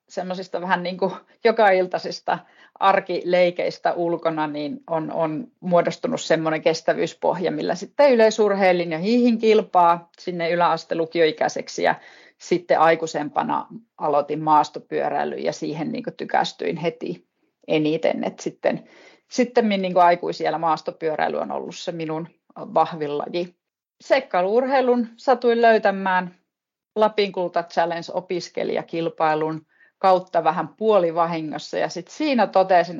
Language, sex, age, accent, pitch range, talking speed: Finnish, female, 30-49, native, 160-200 Hz, 105 wpm